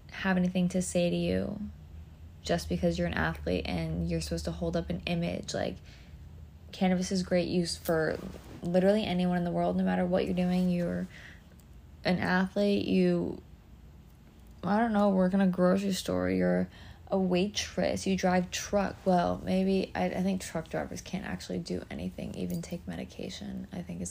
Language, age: English, 20-39